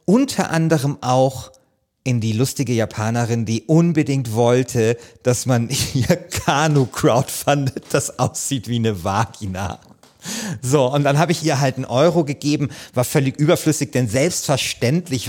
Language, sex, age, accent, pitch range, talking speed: German, male, 40-59, German, 120-160 Hz, 135 wpm